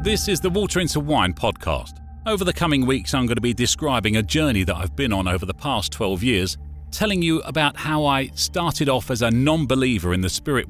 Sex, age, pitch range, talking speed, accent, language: male, 40-59, 80-135 Hz, 225 wpm, British, English